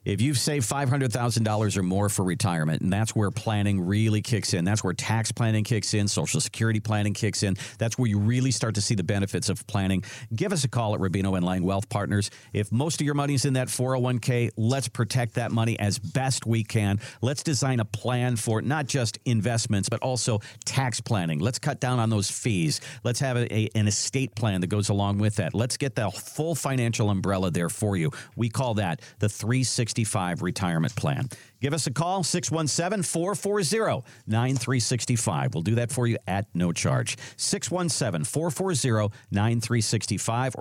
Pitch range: 105-140 Hz